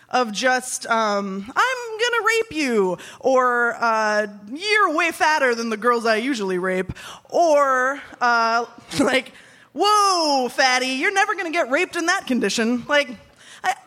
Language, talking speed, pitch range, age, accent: English, 145 wpm, 225-310 Hz, 20-39, American